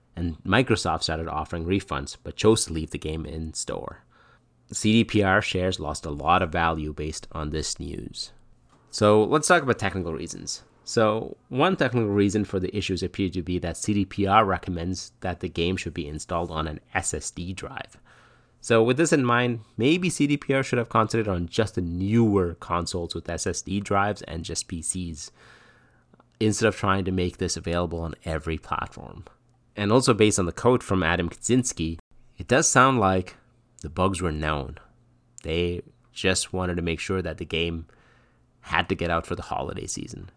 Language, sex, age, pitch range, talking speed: English, male, 30-49, 85-115 Hz, 175 wpm